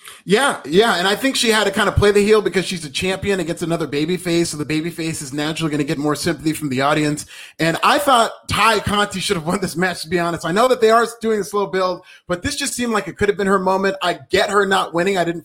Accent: American